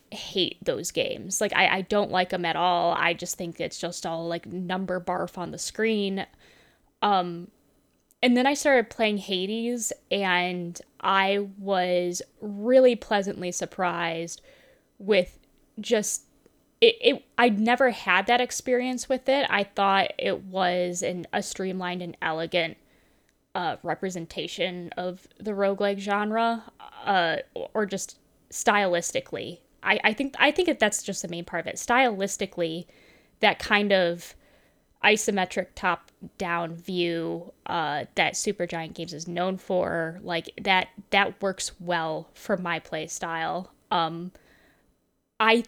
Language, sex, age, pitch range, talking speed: English, female, 10-29, 175-225 Hz, 135 wpm